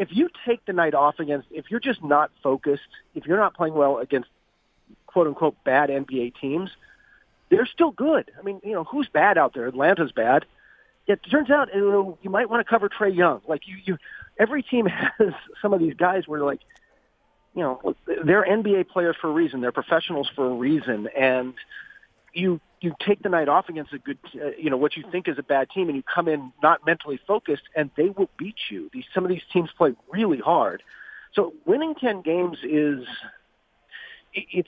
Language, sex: English, male